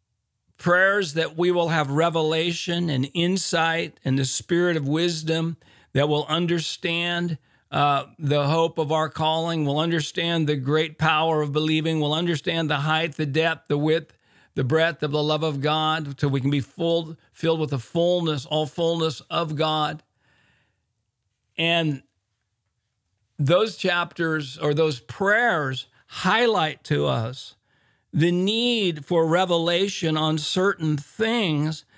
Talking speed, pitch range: 135 wpm, 135-170 Hz